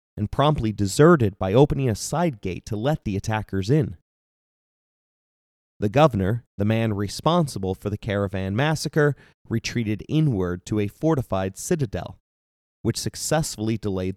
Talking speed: 130 wpm